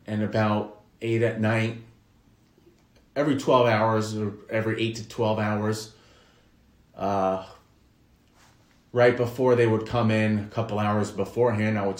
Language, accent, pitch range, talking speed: English, American, 105-115 Hz, 135 wpm